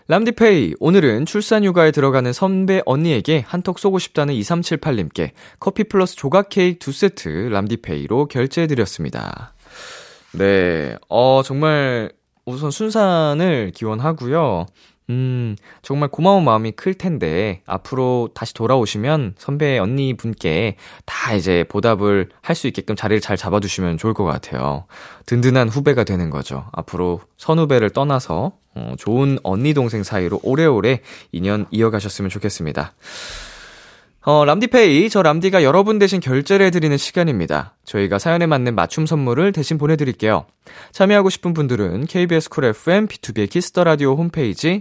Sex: male